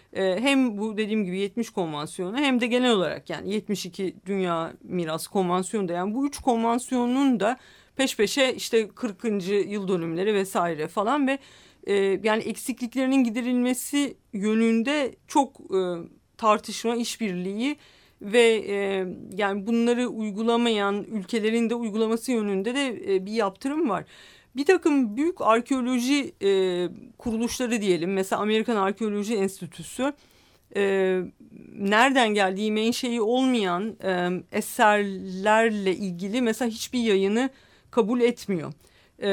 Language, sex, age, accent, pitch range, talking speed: Turkish, female, 50-69, native, 190-235 Hz, 105 wpm